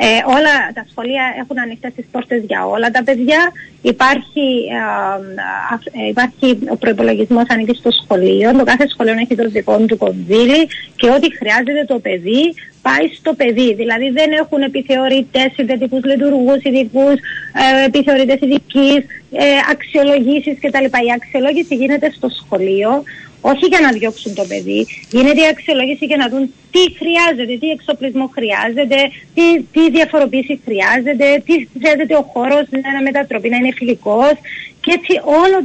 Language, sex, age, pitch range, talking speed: Greek, female, 30-49, 235-290 Hz, 145 wpm